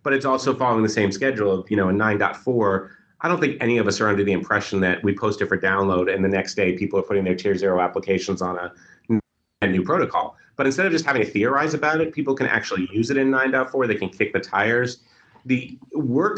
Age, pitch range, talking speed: 30-49, 95-130 Hz, 245 wpm